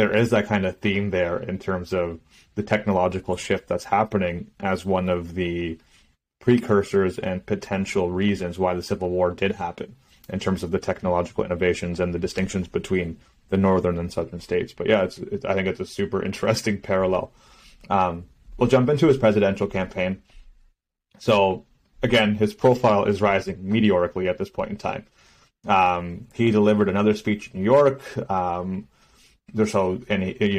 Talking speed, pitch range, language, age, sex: 170 wpm, 90-110 Hz, English, 30-49, male